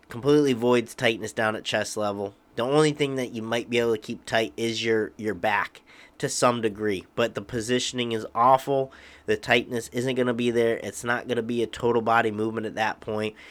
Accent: American